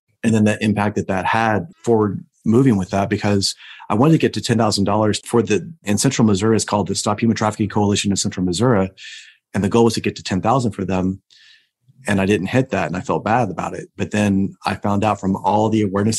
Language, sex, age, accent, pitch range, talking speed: English, male, 30-49, American, 95-110 Hz, 235 wpm